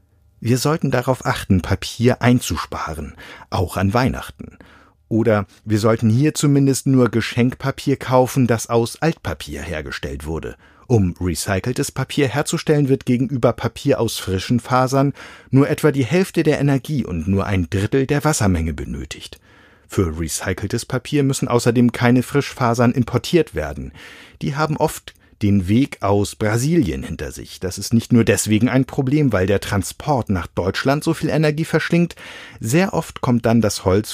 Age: 50-69